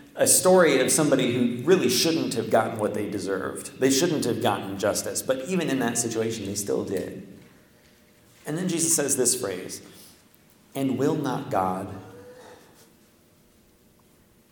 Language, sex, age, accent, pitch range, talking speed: English, male, 40-59, American, 110-135 Hz, 145 wpm